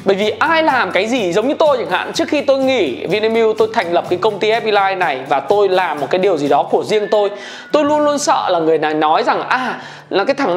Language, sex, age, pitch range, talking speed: Vietnamese, male, 20-39, 195-275 Hz, 275 wpm